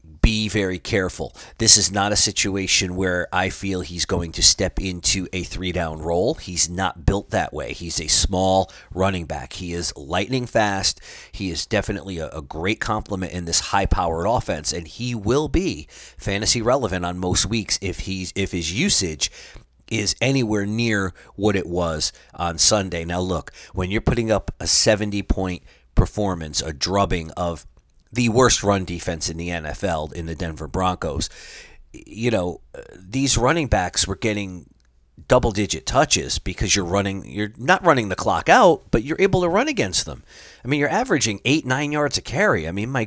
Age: 30-49